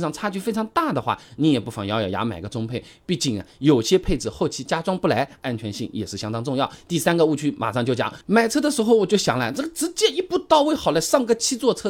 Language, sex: Chinese, male